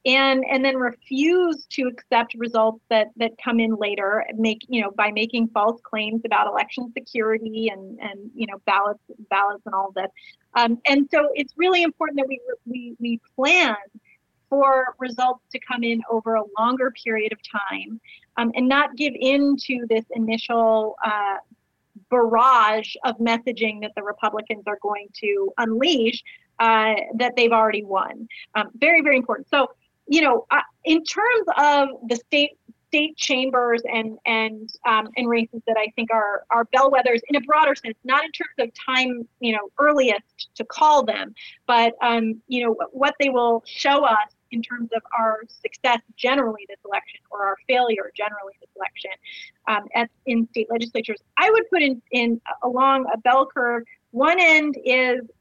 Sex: female